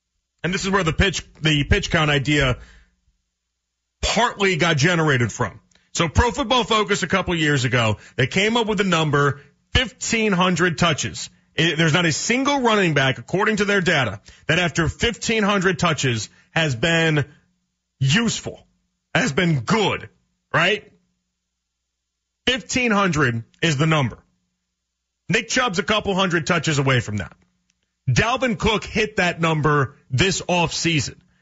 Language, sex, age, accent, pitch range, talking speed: English, male, 30-49, American, 125-190 Hz, 140 wpm